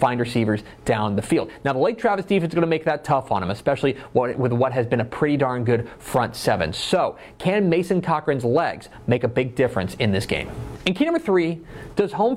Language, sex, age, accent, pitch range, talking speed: English, male, 30-49, American, 120-185 Hz, 230 wpm